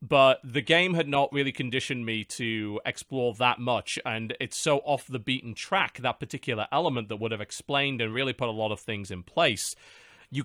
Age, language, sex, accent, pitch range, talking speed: 30-49, English, male, British, 110-150 Hz, 205 wpm